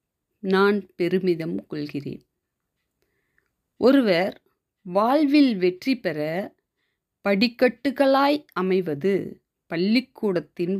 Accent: native